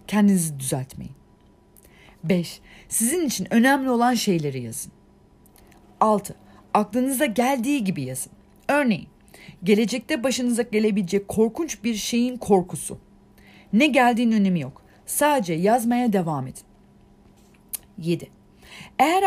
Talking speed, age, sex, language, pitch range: 100 wpm, 40-59, female, Turkish, 180-255 Hz